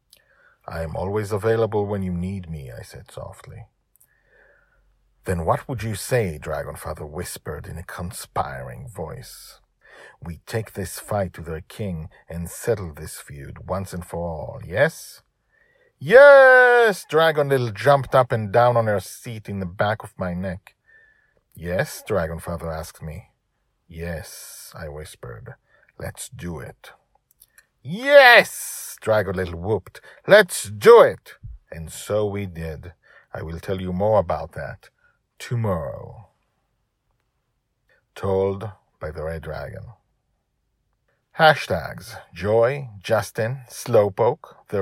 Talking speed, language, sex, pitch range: 125 wpm, English, male, 90-120 Hz